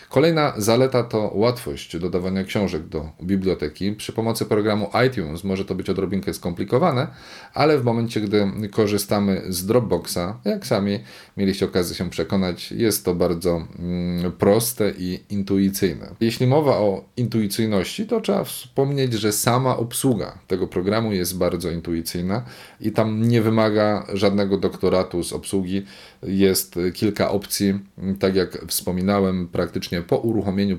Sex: male